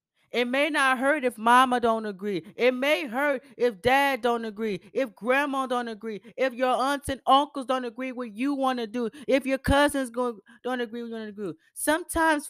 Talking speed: 200 wpm